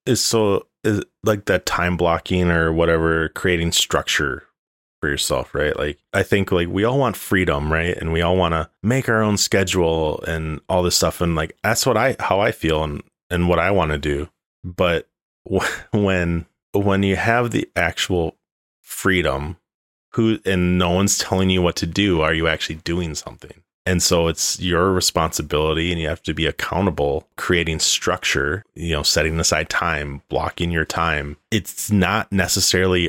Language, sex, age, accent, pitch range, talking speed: English, male, 30-49, American, 80-95 Hz, 180 wpm